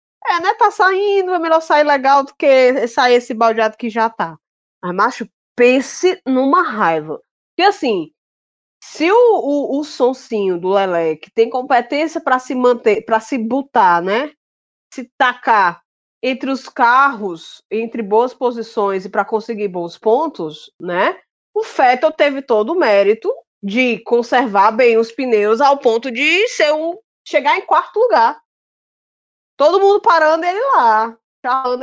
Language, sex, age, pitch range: Portuguese, female, 20-39, 220-310 Hz